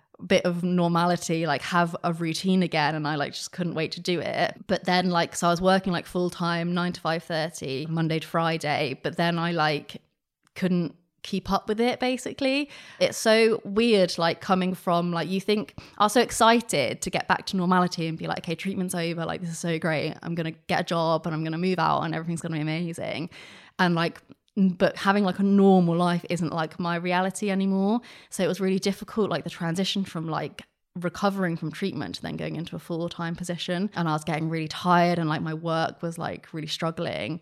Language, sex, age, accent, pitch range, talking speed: English, female, 20-39, British, 160-185 Hz, 215 wpm